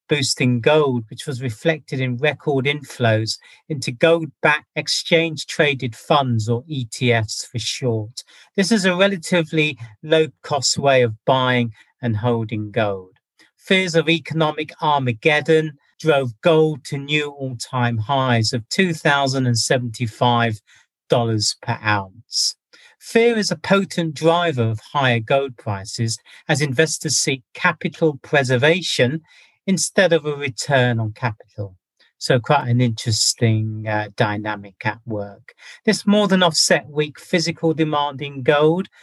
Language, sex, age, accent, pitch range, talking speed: English, male, 40-59, British, 115-155 Hz, 120 wpm